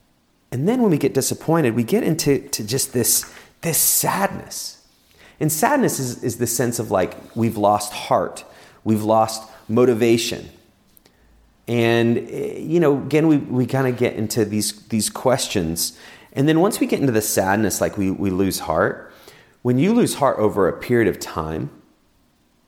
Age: 30-49